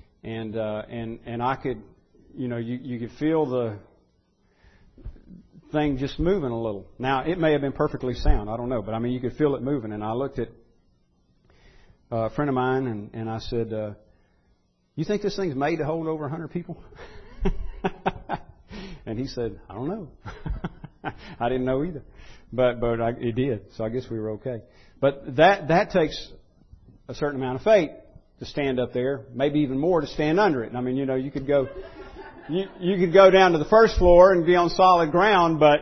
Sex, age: male, 40-59